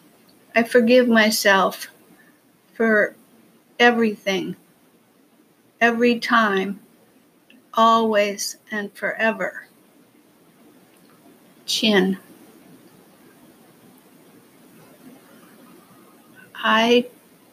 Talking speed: 40 wpm